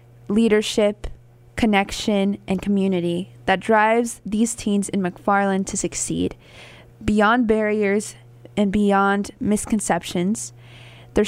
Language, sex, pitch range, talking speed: English, female, 195-230 Hz, 95 wpm